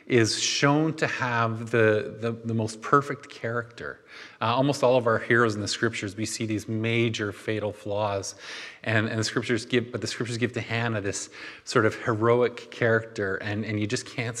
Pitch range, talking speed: 105-125 Hz, 190 wpm